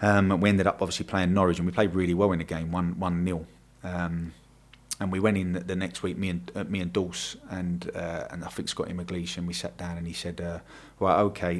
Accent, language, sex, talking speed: British, English, male, 270 wpm